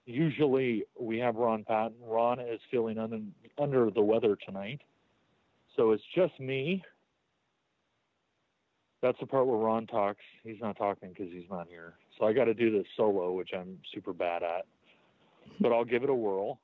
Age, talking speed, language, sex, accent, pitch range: 40-59, 170 wpm, English, male, American, 100-120 Hz